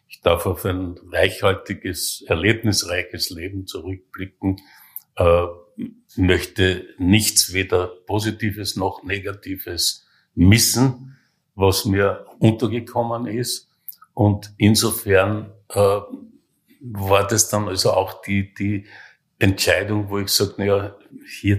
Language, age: German, 50-69